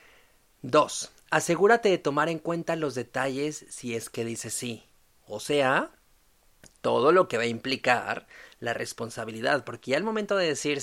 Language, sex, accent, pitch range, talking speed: Spanish, male, Mexican, 120-170 Hz, 160 wpm